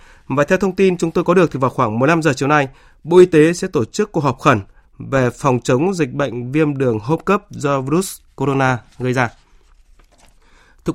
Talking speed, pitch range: 215 wpm, 135-170 Hz